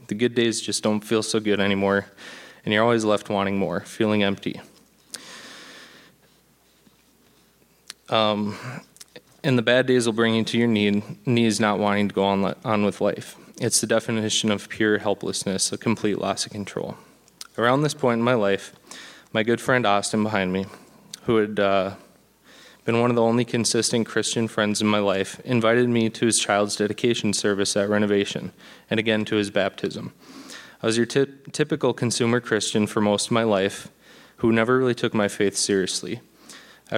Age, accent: 20-39, American